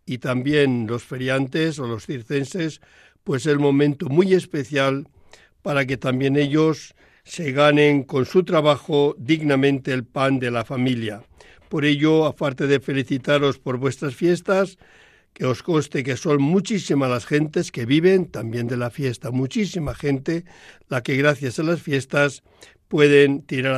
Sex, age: male, 60-79